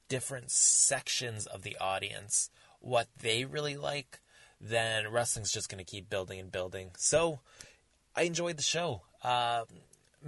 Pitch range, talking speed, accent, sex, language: 100-125 Hz, 140 wpm, American, male, English